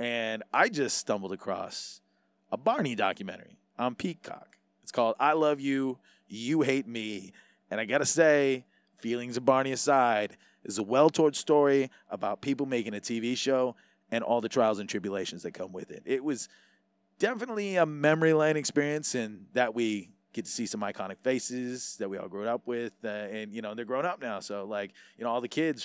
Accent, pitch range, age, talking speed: American, 110-140 Hz, 30-49, 195 wpm